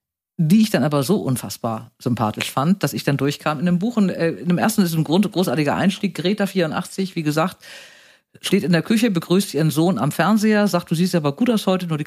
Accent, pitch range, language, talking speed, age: German, 145-185 Hz, German, 240 wpm, 50-69